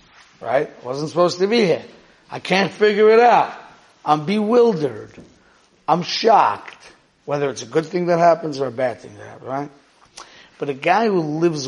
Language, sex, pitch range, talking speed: English, male, 145-185 Hz, 175 wpm